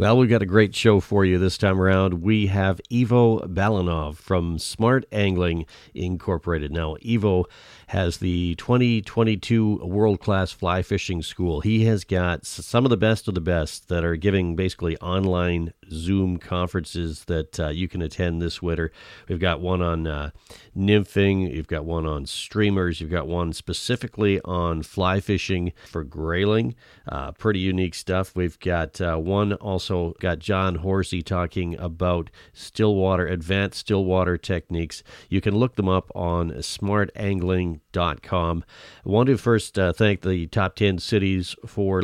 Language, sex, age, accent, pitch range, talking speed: English, male, 40-59, American, 85-105 Hz, 160 wpm